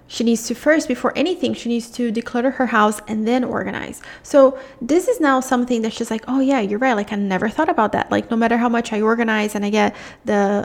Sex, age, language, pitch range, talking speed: female, 20-39, English, 215-260 Hz, 250 wpm